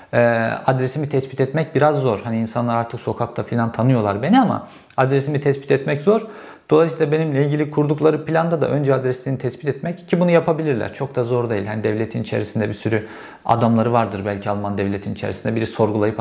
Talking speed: 175 wpm